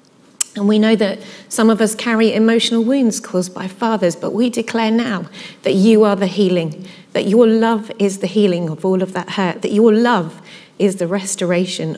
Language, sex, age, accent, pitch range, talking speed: English, female, 30-49, British, 180-225 Hz, 195 wpm